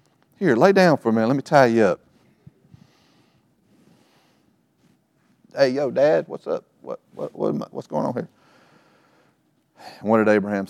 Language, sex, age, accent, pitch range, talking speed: English, male, 40-59, American, 100-125 Hz, 165 wpm